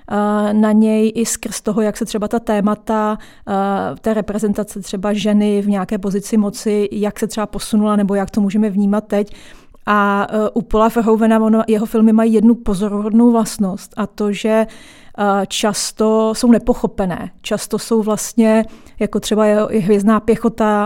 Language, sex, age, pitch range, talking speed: Czech, female, 30-49, 200-220 Hz, 150 wpm